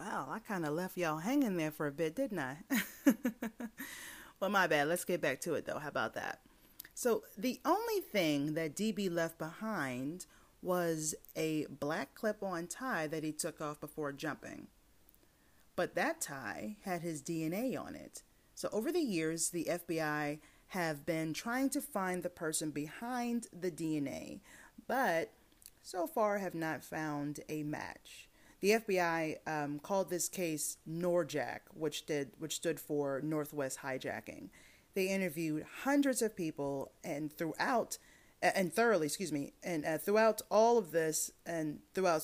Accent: American